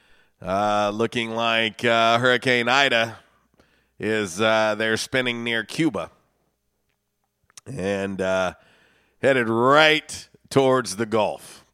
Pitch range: 95-130 Hz